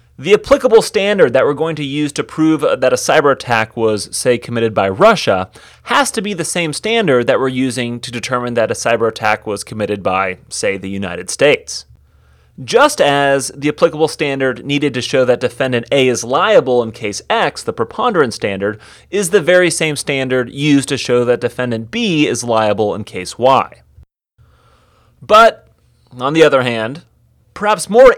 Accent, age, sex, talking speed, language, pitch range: American, 30-49, male, 175 wpm, English, 115-170 Hz